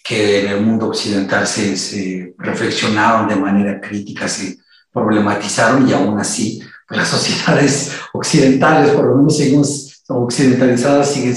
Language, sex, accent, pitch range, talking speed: Spanish, male, Mexican, 110-140 Hz, 130 wpm